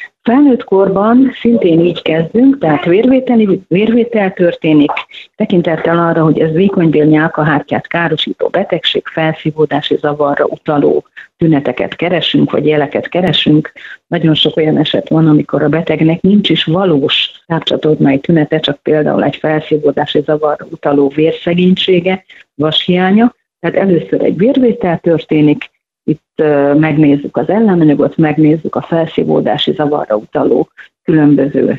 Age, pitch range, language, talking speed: 30-49, 150-180 Hz, Hungarian, 115 wpm